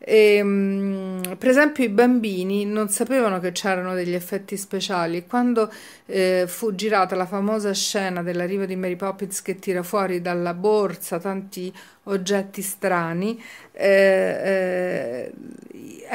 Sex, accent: female, native